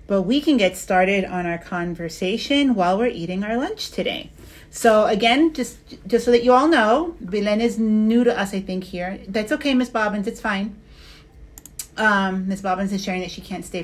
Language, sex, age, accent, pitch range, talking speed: English, female, 40-59, American, 190-245 Hz, 200 wpm